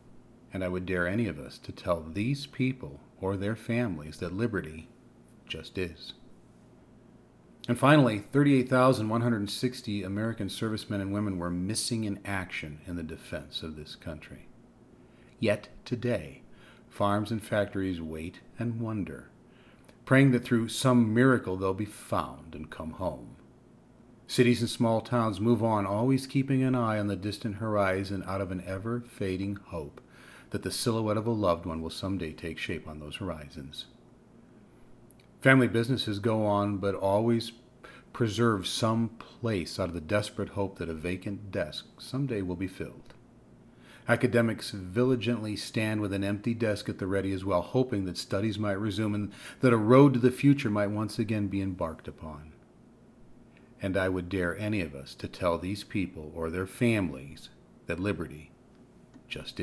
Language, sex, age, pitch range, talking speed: English, male, 40-59, 95-120 Hz, 155 wpm